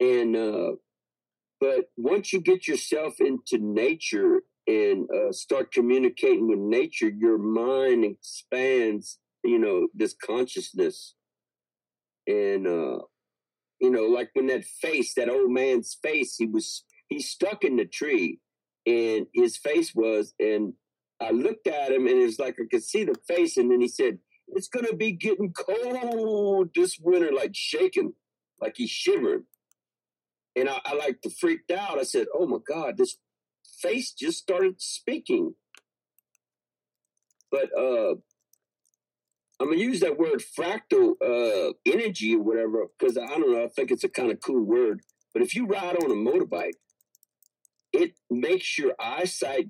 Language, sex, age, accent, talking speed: English, male, 50-69, American, 155 wpm